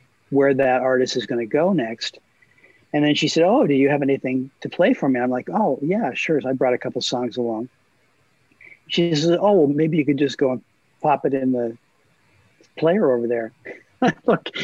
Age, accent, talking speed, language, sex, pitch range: 50-69, American, 205 wpm, English, male, 125-150 Hz